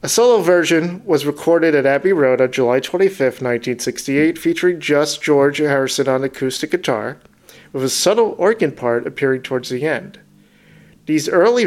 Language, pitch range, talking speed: English, 130-155 Hz, 155 wpm